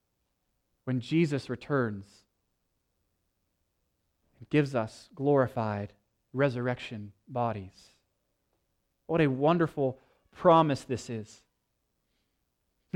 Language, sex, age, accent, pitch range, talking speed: English, male, 30-49, American, 120-180 Hz, 75 wpm